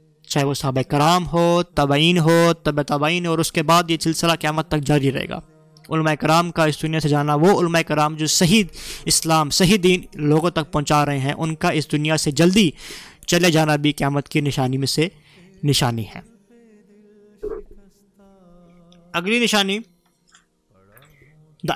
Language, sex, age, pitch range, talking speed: Urdu, male, 20-39, 155-190 Hz, 165 wpm